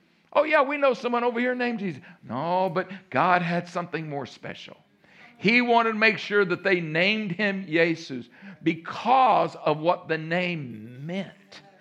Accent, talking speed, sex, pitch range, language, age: American, 165 wpm, male, 155-200 Hz, English, 60-79